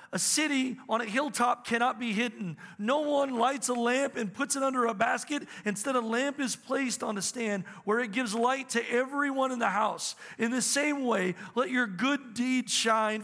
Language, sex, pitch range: English, male, 205-250 Hz